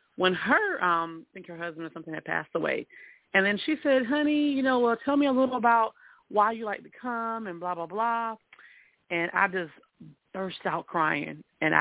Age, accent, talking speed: 30-49, American, 205 wpm